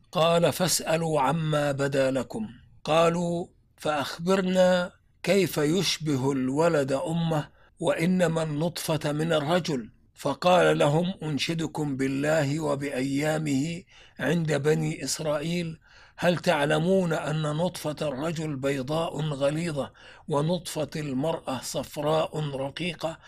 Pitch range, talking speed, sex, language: 145-165 Hz, 90 wpm, male, Arabic